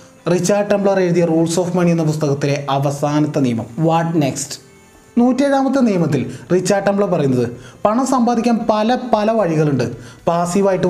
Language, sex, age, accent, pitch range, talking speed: Malayalam, male, 20-39, native, 145-210 Hz, 125 wpm